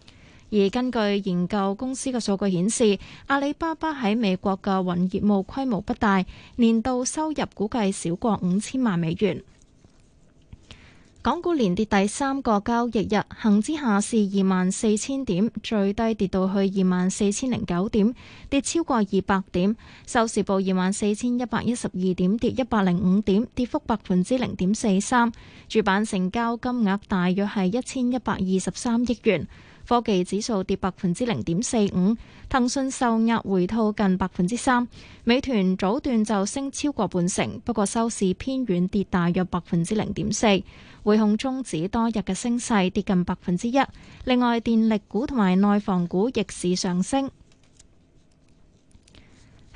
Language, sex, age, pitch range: Chinese, female, 20-39, 190-240 Hz